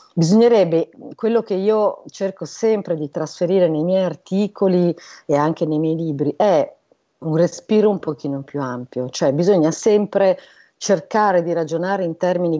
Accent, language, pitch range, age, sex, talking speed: native, Italian, 150-190 Hz, 40-59, female, 150 wpm